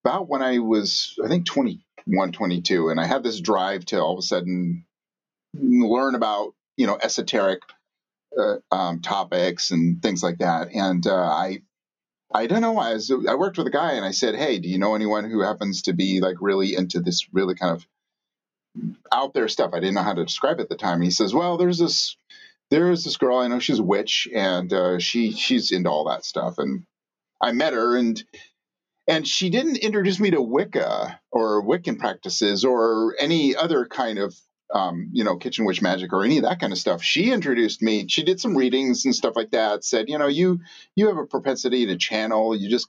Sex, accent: male, American